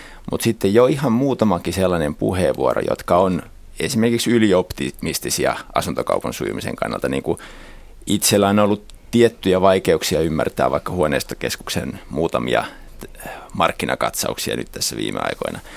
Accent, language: native, Finnish